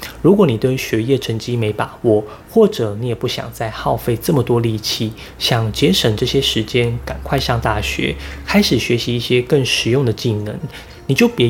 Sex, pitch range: male, 110-140 Hz